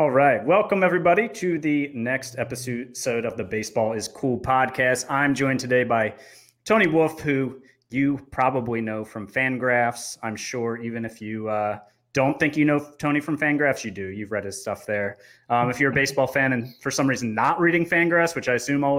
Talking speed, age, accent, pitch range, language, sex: 200 wpm, 30-49, American, 115-145 Hz, English, male